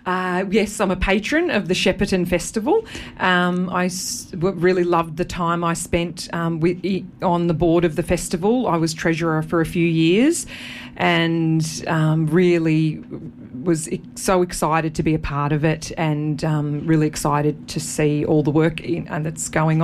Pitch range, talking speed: 155-185 Hz, 185 wpm